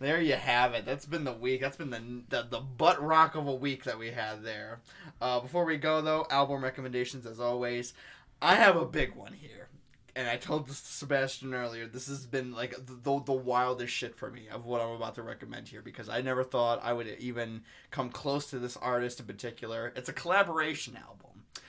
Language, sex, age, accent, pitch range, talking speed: English, male, 20-39, American, 120-155 Hz, 220 wpm